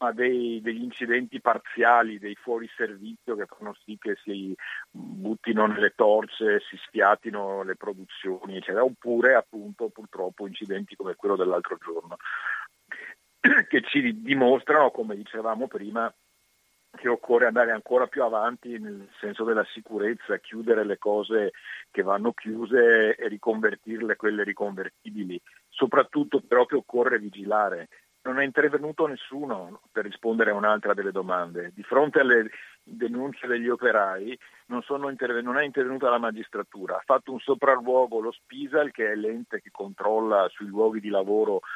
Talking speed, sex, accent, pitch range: 135 wpm, male, native, 105-130 Hz